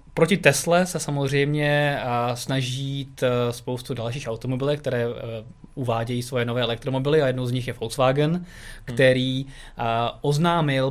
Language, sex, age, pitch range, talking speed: Czech, male, 20-39, 120-145 Hz, 115 wpm